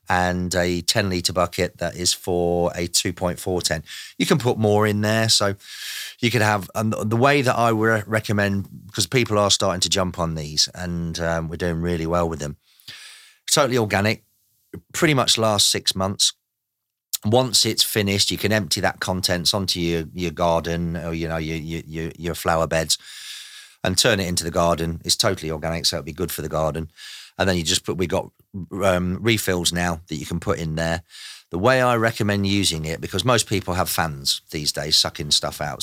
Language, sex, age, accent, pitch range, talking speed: English, male, 30-49, British, 85-105 Hz, 200 wpm